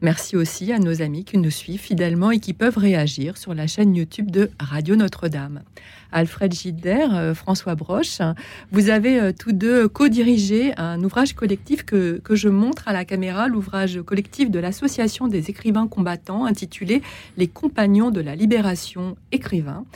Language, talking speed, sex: French, 160 wpm, female